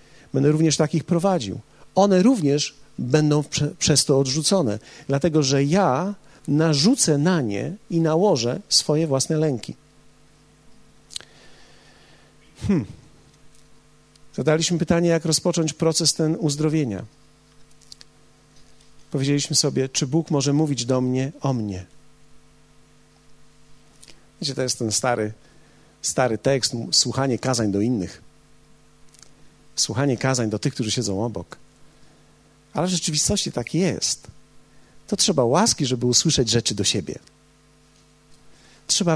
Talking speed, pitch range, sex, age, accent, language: 105 wpm, 125-155 Hz, male, 50-69, native, Polish